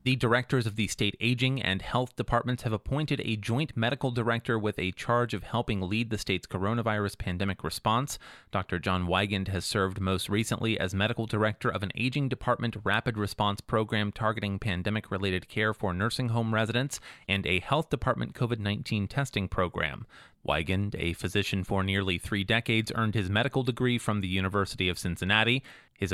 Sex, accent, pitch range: male, American, 95-120 Hz